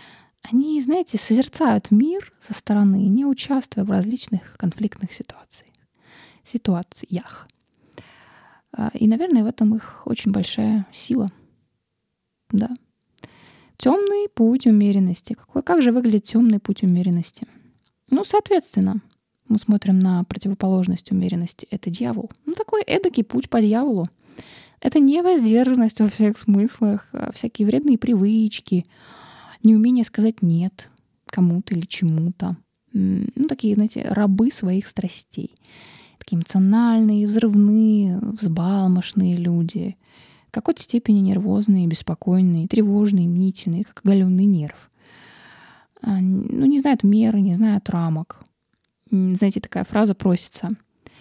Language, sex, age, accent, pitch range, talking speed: Russian, female, 20-39, native, 190-235 Hz, 105 wpm